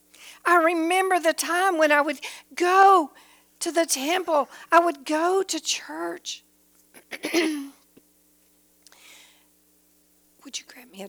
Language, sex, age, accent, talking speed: English, female, 60-79, American, 115 wpm